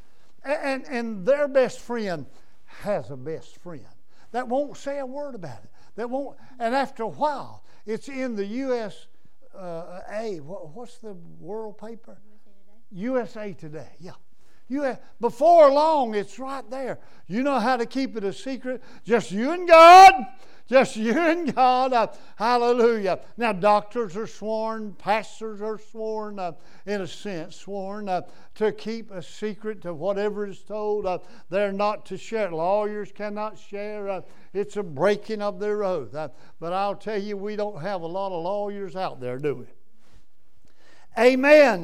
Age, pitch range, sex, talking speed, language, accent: 60-79, 190-235 Hz, male, 155 wpm, English, American